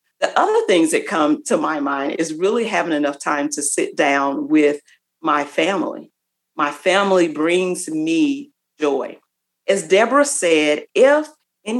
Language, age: English, 40-59